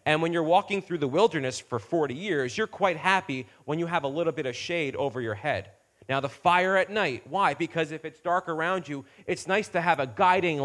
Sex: male